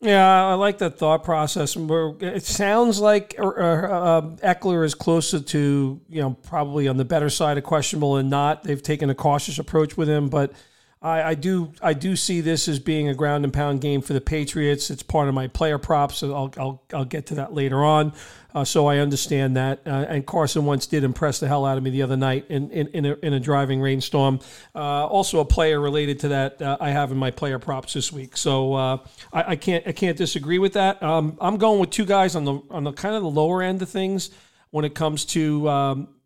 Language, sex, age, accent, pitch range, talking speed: English, male, 40-59, American, 145-165 Hz, 230 wpm